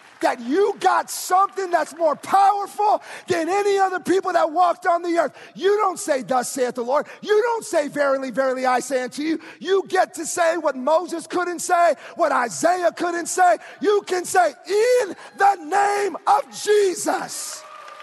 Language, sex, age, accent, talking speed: English, male, 40-59, American, 175 wpm